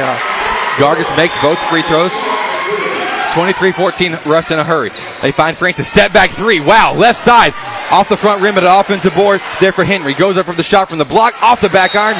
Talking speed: 215 wpm